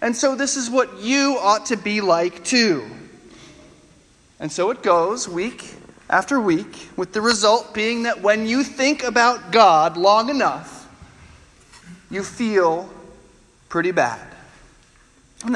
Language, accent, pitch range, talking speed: English, American, 170-225 Hz, 135 wpm